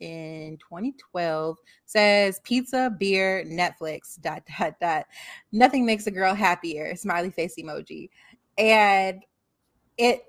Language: English